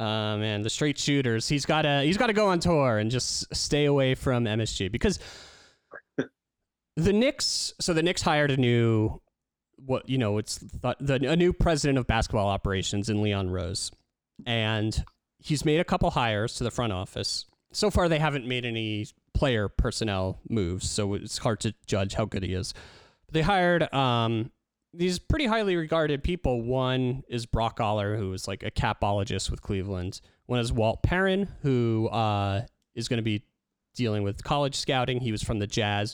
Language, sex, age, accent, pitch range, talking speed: English, male, 30-49, American, 105-135 Hz, 180 wpm